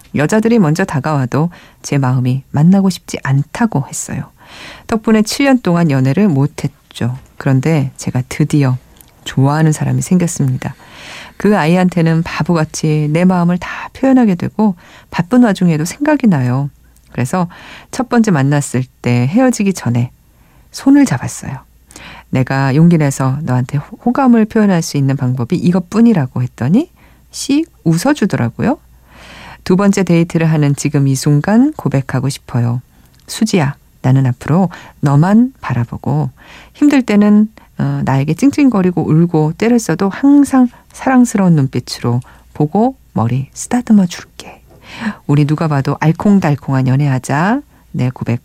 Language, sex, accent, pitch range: Korean, female, native, 135-200 Hz